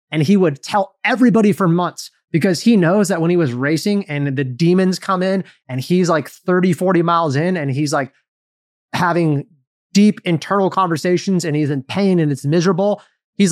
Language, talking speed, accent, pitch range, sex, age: English, 185 wpm, American, 155-205 Hz, male, 20-39